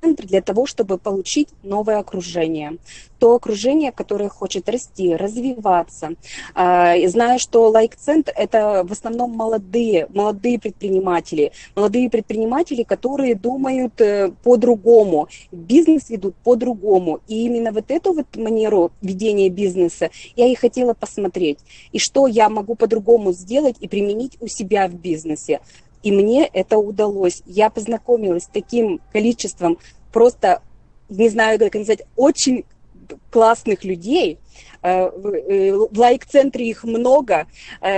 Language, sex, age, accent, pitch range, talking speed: Russian, female, 20-39, native, 200-245 Hz, 120 wpm